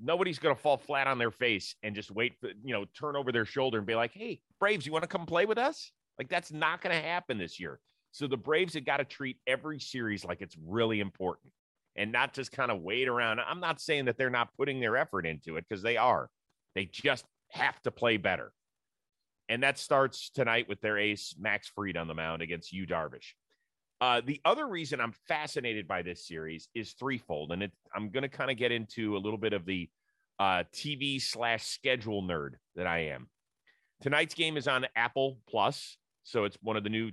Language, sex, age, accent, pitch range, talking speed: English, male, 30-49, American, 105-140 Hz, 220 wpm